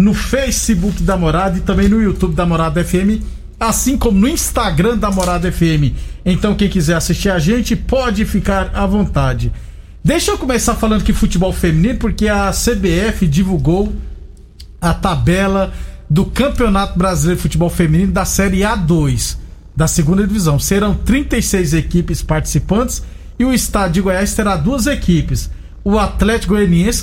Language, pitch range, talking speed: Portuguese, 165-205 Hz, 150 wpm